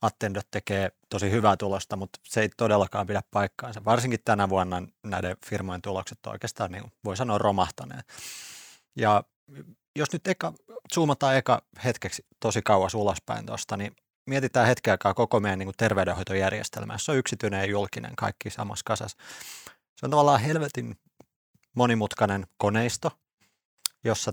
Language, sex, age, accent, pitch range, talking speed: Finnish, male, 30-49, native, 100-120 Hz, 145 wpm